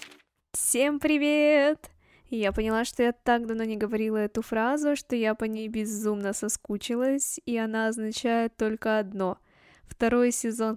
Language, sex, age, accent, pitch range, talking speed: Russian, female, 10-29, native, 220-260 Hz, 140 wpm